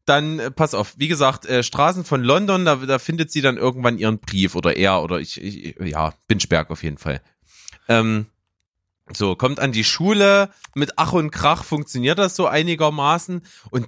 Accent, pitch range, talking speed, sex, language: German, 125-200 Hz, 180 wpm, male, German